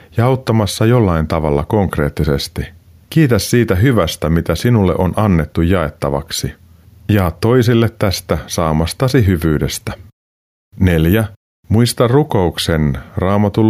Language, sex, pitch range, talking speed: Finnish, male, 85-110 Hz, 95 wpm